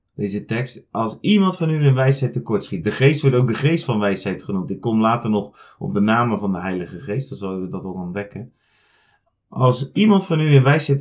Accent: Dutch